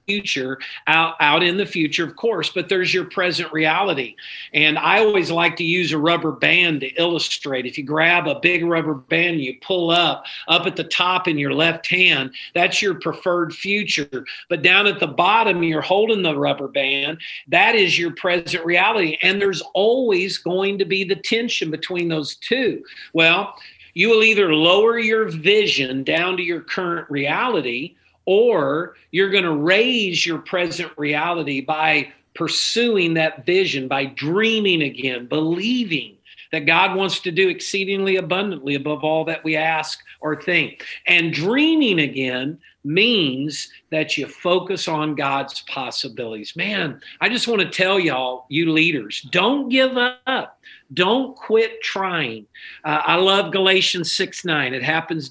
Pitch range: 155-195 Hz